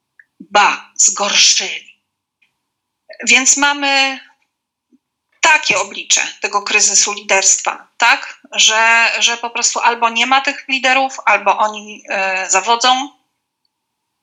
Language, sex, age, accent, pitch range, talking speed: Polish, female, 30-49, native, 220-310 Hz, 90 wpm